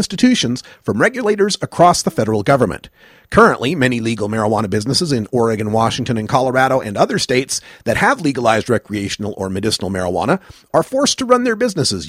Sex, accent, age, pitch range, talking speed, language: male, American, 40-59, 110-185 Hz, 170 wpm, English